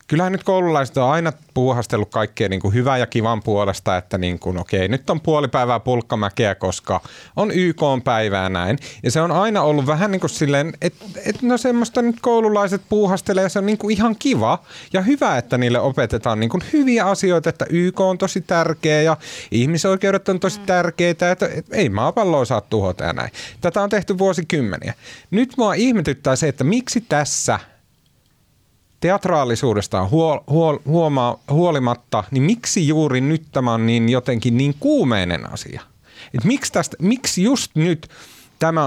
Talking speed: 160 wpm